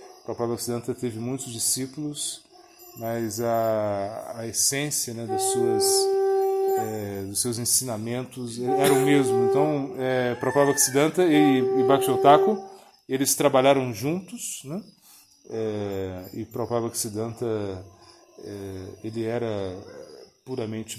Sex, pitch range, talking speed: male, 110-135 Hz, 110 wpm